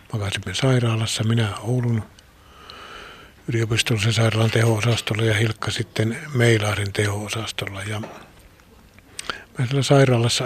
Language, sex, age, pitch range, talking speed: Finnish, male, 60-79, 110-135 Hz, 85 wpm